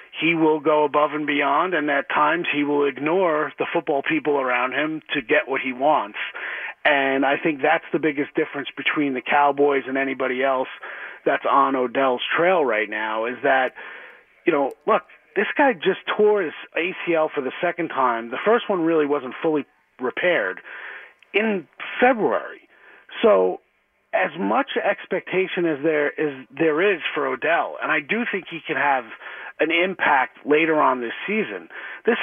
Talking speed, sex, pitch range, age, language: 165 wpm, male, 135-175 Hz, 40-59, English